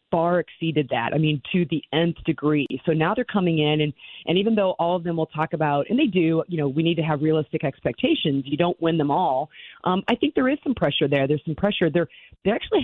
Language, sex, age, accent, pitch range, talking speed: English, female, 40-59, American, 150-180 Hz, 255 wpm